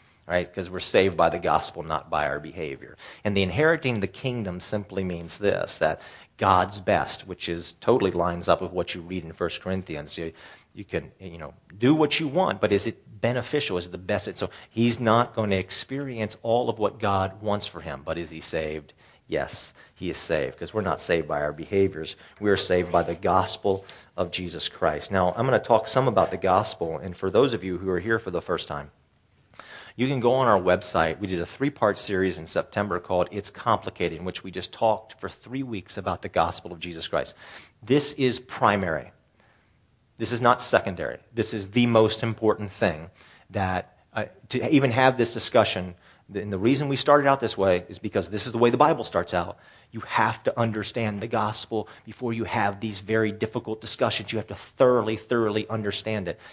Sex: male